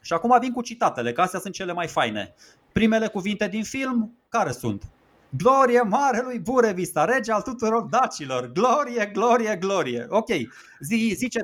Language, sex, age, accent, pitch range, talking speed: Romanian, male, 30-49, native, 160-225 Hz, 155 wpm